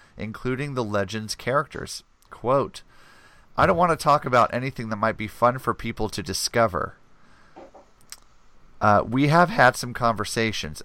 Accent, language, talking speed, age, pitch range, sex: American, English, 145 wpm, 40-59, 105-125 Hz, male